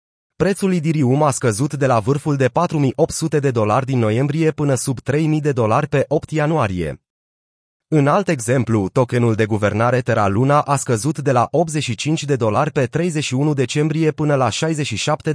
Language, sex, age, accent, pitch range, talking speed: Romanian, male, 30-49, native, 120-150 Hz, 165 wpm